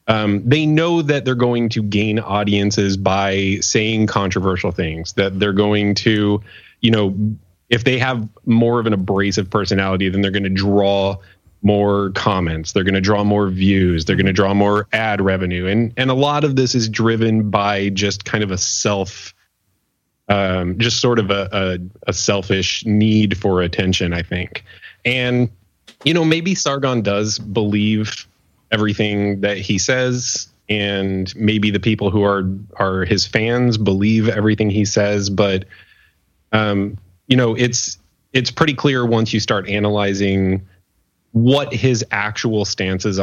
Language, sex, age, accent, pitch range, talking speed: English, male, 20-39, American, 95-115 Hz, 160 wpm